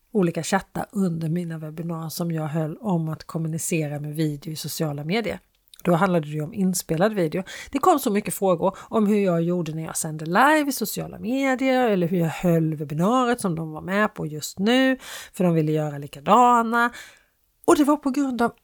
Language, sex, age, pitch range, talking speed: Swedish, female, 40-59, 160-210 Hz, 200 wpm